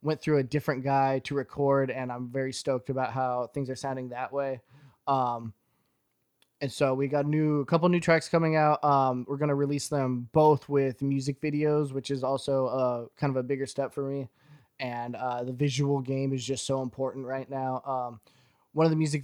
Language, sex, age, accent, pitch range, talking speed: English, male, 20-39, American, 130-145 Hz, 210 wpm